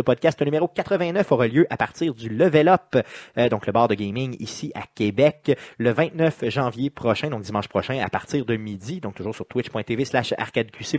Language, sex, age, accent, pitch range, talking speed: French, male, 30-49, Canadian, 120-165 Hz, 195 wpm